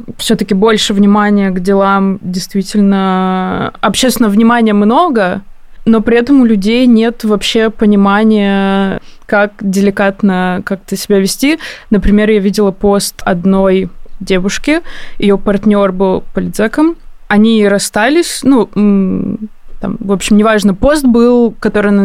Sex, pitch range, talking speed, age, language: female, 195-235 Hz, 115 wpm, 20-39, Russian